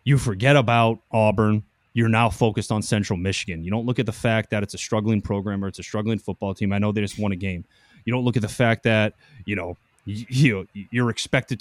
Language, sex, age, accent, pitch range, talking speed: English, male, 30-49, American, 100-120 Hz, 245 wpm